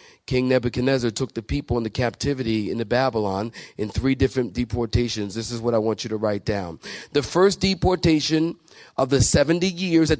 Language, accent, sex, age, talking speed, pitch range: English, American, male, 40-59, 175 wpm, 115-150 Hz